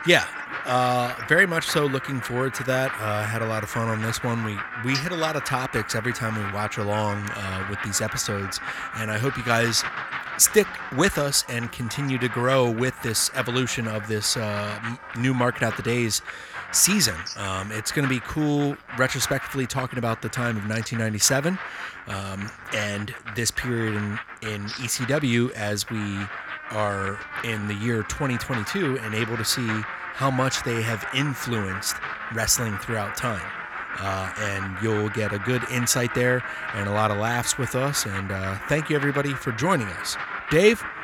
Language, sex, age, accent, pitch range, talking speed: English, male, 30-49, American, 105-130 Hz, 180 wpm